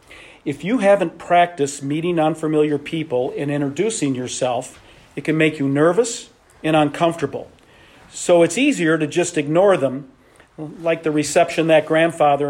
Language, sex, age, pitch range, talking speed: English, male, 50-69, 145-175 Hz, 140 wpm